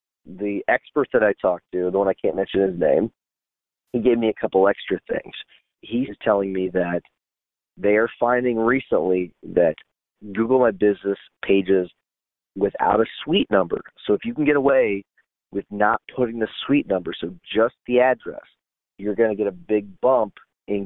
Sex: male